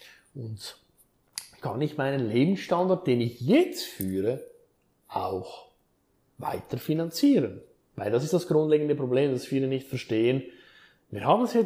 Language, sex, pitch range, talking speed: German, male, 120-150 Hz, 130 wpm